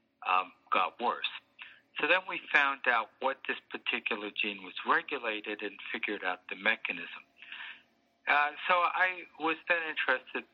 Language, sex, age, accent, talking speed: English, male, 50-69, American, 140 wpm